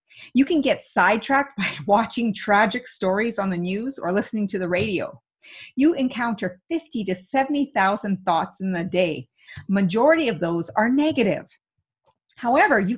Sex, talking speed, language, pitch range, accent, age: female, 150 wpm, English, 190-265 Hz, American, 30-49